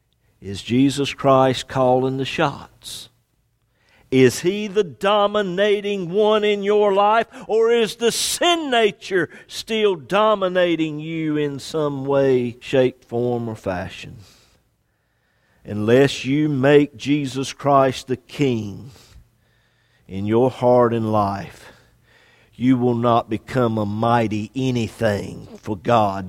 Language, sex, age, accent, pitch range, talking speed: English, male, 50-69, American, 110-145 Hz, 115 wpm